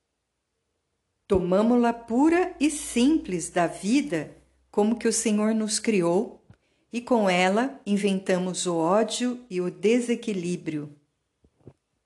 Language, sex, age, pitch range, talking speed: Portuguese, female, 50-69, 165-220 Hz, 105 wpm